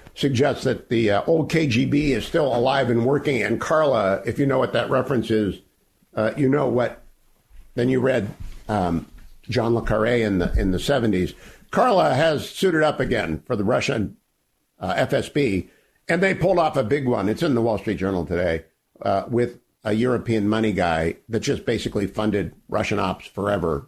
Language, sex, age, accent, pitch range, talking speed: English, male, 50-69, American, 105-160 Hz, 185 wpm